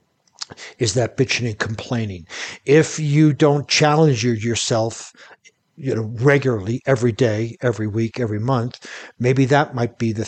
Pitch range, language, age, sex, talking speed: 115-135 Hz, English, 60-79, male, 140 wpm